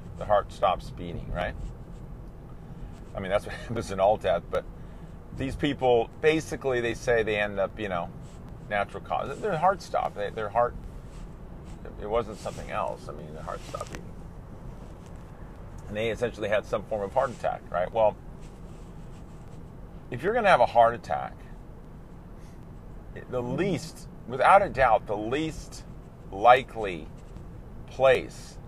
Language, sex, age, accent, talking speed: English, male, 40-59, American, 145 wpm